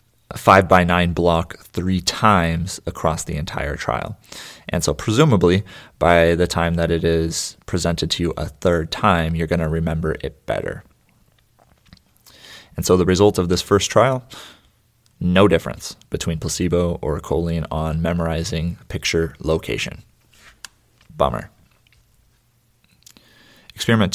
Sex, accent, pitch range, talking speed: male, American, 85-105 Hz, 125 wpm